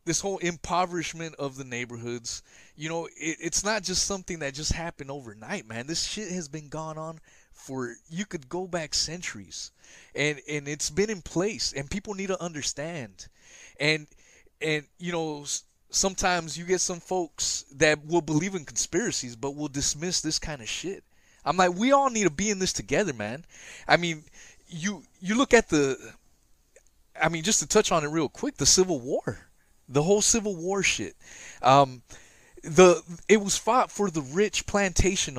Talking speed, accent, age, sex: 180 wpm, American, 20-39, male